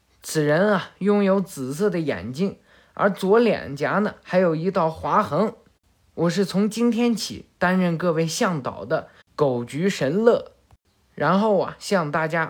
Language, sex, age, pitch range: Chinese, male, 20-39, 150-210 Hz